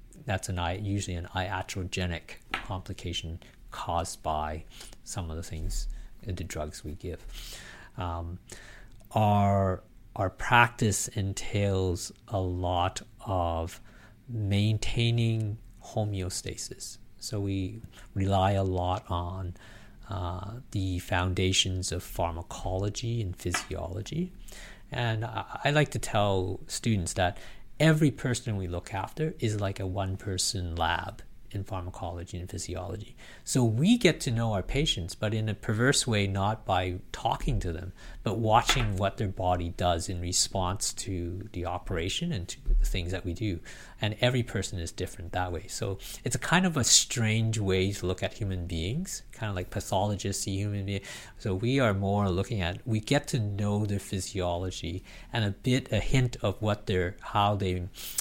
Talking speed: 150 wpm